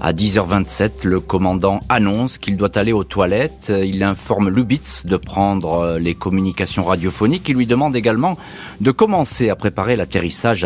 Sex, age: male, 40-59